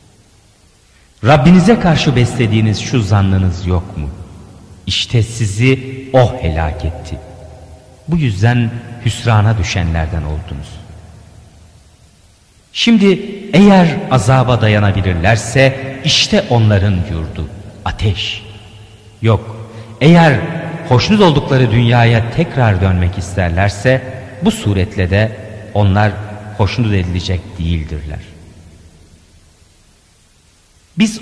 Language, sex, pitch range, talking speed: Turkish, male, 90-120 Hz, 80 wpm